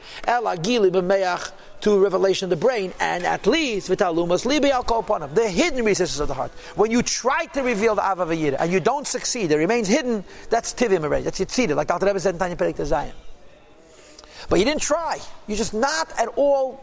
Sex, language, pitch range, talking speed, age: male, English, 195-265 Hz, 175 wpm, 50-69